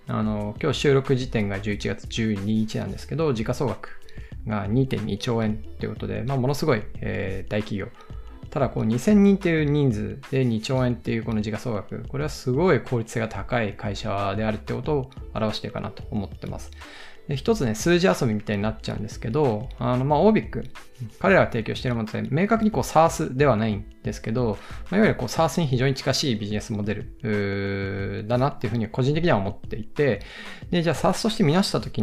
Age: 20-39